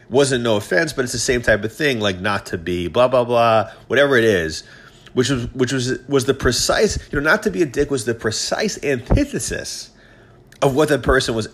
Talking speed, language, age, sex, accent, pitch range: 225 wpm, English, 30-49, male, American, 100-120 Hz